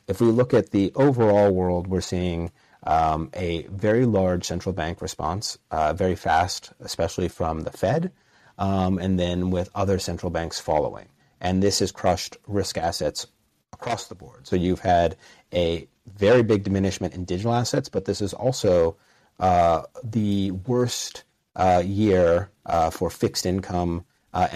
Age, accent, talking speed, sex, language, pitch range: 30-49, American, 155 wpm, male, English, 85-105 Hz